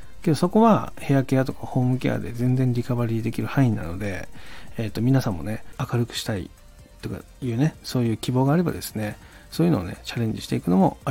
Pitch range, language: 110-150 Hz, Japanese